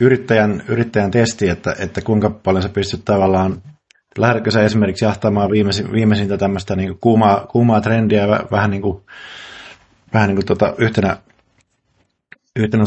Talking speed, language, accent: 135 wpm, Finnish, native